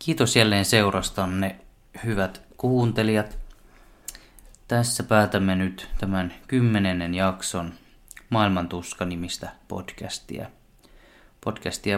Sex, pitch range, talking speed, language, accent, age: male, 90-105 Hz, 70 wpm, Finnish, native, 20-39